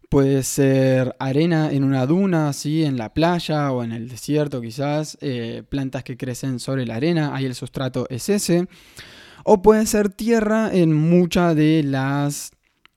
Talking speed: 160 wpm